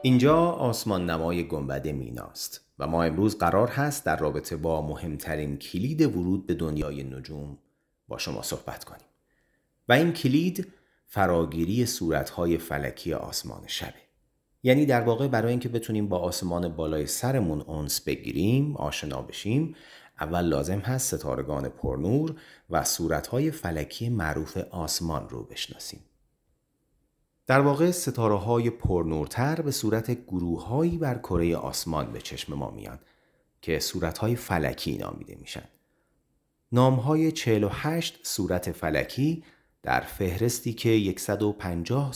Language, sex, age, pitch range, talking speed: Persian, male, 30-49, 80-130 Hz, 125 wpm